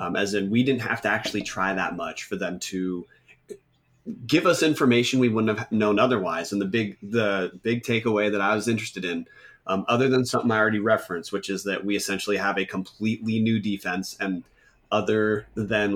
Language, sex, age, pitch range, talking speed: English, male, 30-49, 95-115 Hz, 200 wpm